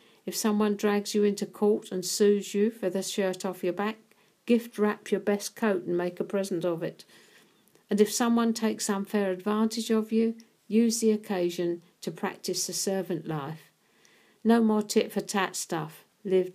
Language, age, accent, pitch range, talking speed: English, 50-69, British, 175-210 Hz, 170 wpm